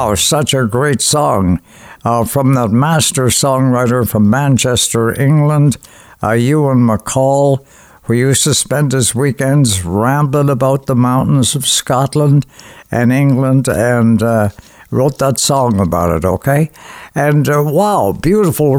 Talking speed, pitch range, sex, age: 135 wpm, 115-150 Hz, male, 60-79